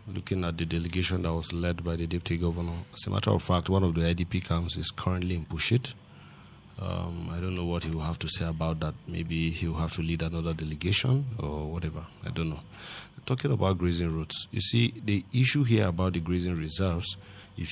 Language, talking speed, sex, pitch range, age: English, 215 wpm, male, 85-105 Hz, 30-49